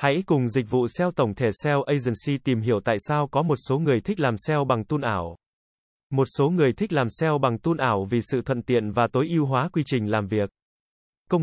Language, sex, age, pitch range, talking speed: Vietnamese, male, 20-39, 120-155 Hz, 235 wpm